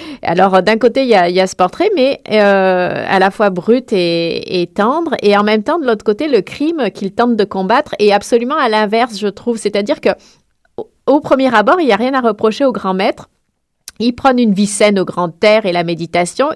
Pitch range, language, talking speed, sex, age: 185-235 Hz, French, 225 wpm, female, 40-59